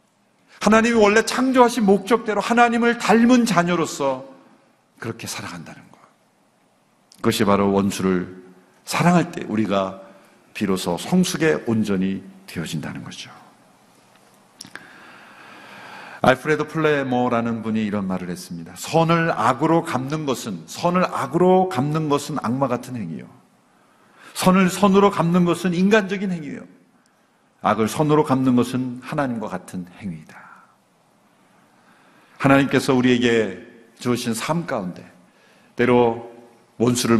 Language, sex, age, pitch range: Korean, male, 50-69, 115-185 Hz